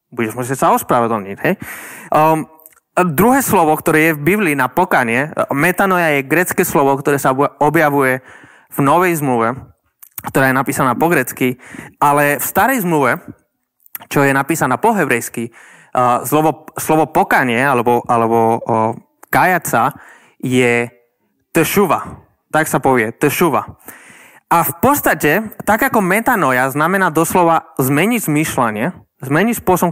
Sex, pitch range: male, 130-175 Hz